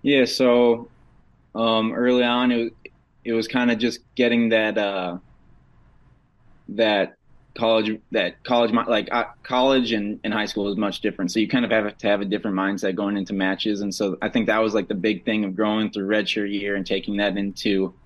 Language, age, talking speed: English, 20-39, 200 wpm